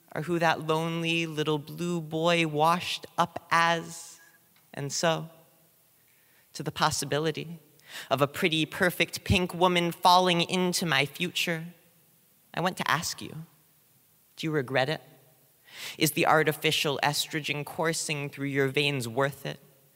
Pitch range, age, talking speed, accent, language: 150-180 Hz, 30-49, 130 wpm, American, English